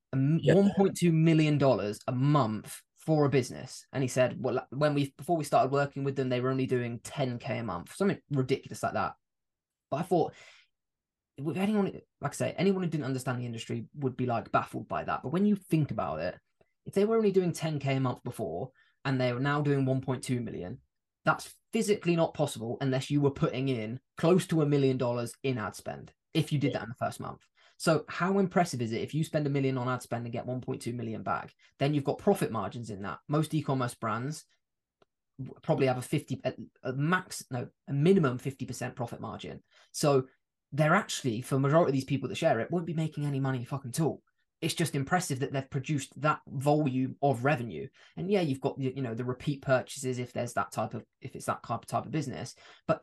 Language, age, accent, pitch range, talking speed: English, 20-39, British, 125-160 Hz, 215 wpm